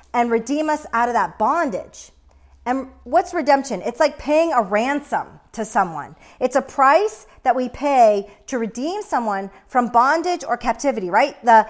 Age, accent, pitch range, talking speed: 40-59, American, 195-270 Hz, 165 wpm